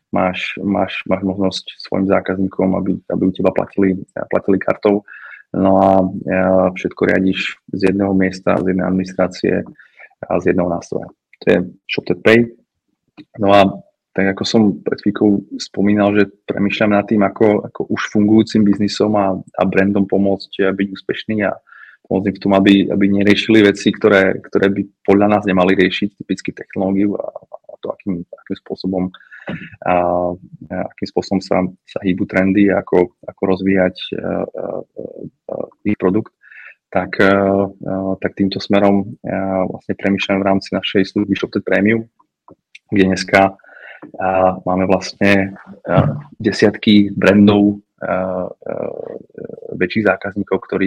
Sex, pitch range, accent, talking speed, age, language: male, 95-100 Hz, native, 140 wpm, 20-39, Czech